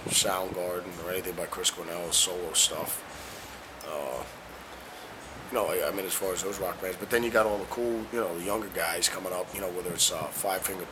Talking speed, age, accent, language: 220 wpm, 30-49, American, English